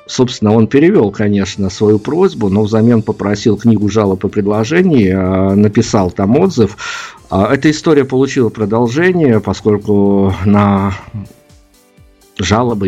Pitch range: 100-120 Hz